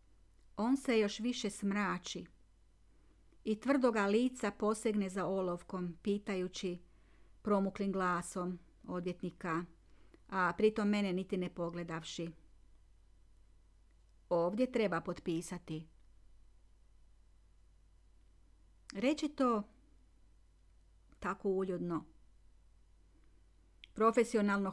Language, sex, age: Croatian, female, 40-59